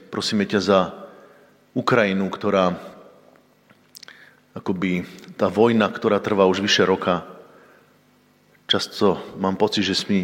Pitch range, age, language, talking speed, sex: 90-105 Hz, 40-59, Slovak, 105 wpm, male